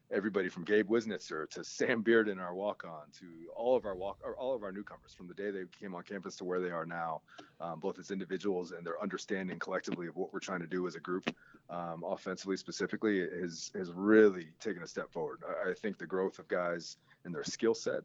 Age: 30-49